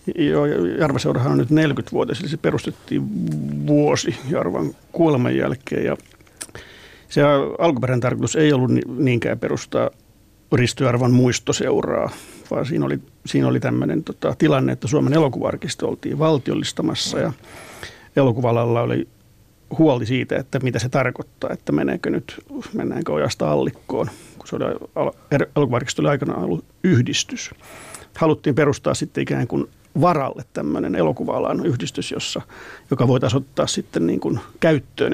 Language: Finnish